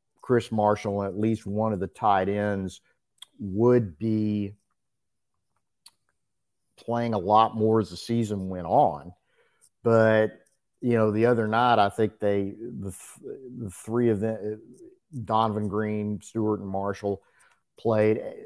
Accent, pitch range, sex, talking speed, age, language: American, 100-115 Hz, male, 130 wpm, 50-69, English